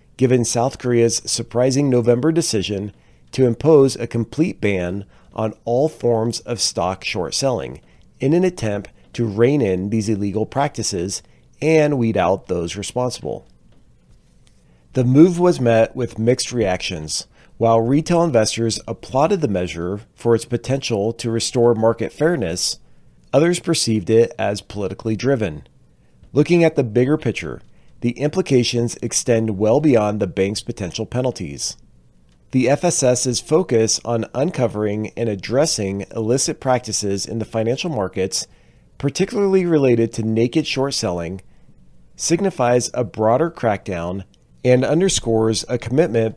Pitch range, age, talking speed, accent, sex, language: 105-135 Hz, 40-59, 125 wpm, American, male, English